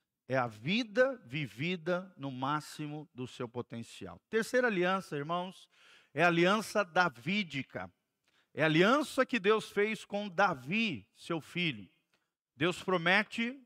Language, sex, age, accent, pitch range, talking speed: Portuguese, male, 50-69, Brazilian, 150-210 Hz, 125 wpm